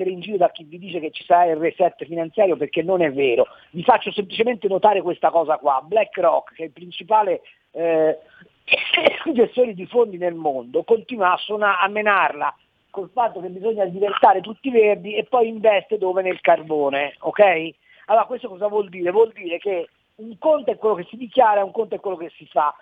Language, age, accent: Italian, 50-69, native